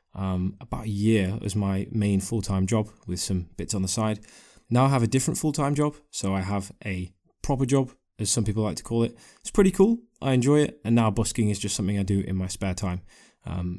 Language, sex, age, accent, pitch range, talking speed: English, male, 20-39, British, 100-125 Hz, 235 wpm